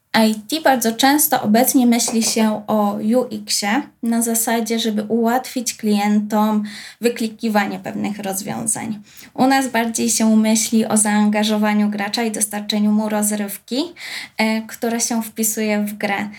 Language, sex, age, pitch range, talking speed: Polish, female, 20-39, 210-245 Hz, 120 wpm